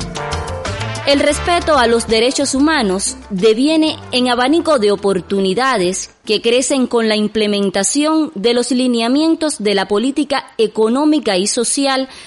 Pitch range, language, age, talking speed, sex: 200-275 Hz, Spanish, 20-39, 120 wpm, female